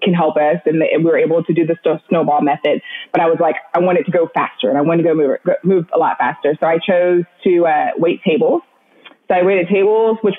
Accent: American